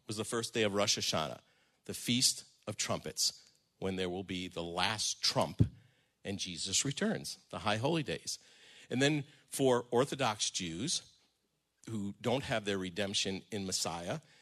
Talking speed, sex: 155 wpm, male